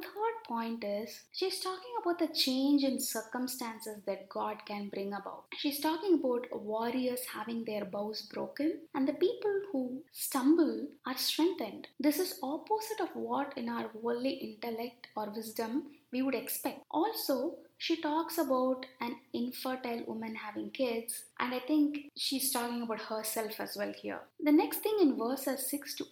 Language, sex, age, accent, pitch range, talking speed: English, female, 20-39, Indian, 230-305 Hz, 160 wpm